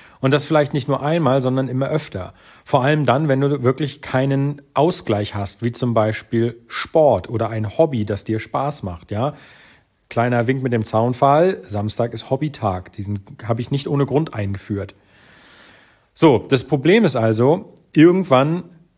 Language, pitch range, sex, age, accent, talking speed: German, 110-140 Hz, male, 40-59, German, 160 wpm